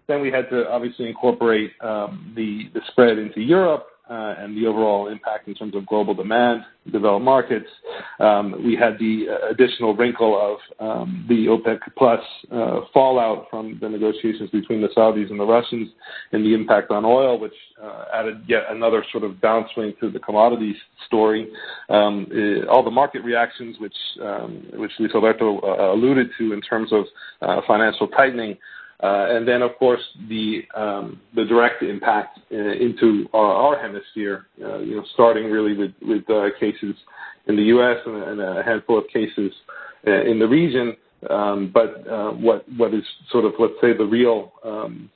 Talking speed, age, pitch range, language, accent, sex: 180 wpm, 40-59, 105-120 Hz, English, American, male